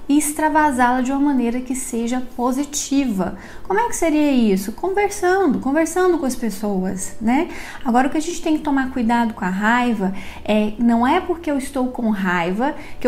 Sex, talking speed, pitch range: female, 185 wpm, 220-270 Hz